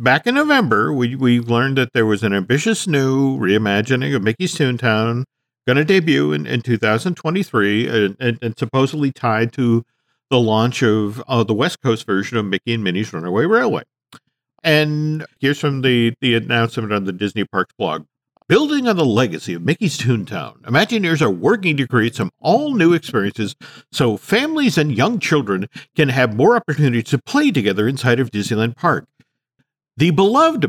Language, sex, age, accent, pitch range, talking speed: English, male, 50-69, American, 115-165 Hz, 170 wpm